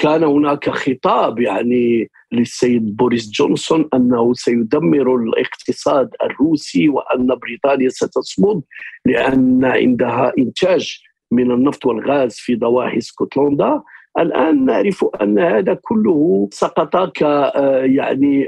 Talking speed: 95 wpm